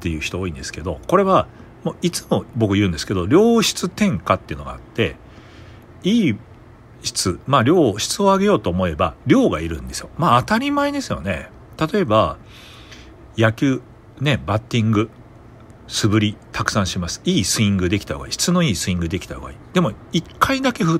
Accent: native